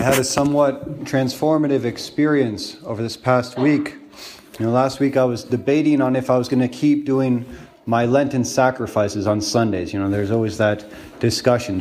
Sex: male